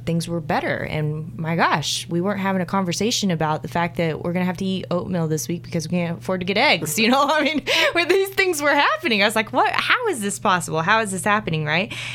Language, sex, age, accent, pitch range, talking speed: English, female, 20-39, American, 140-180 Hz, 260 wpm